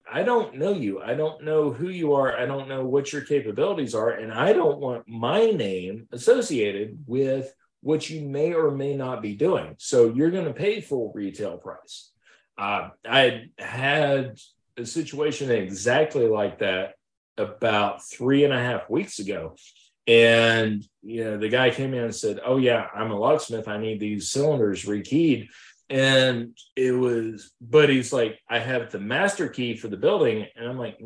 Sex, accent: male, American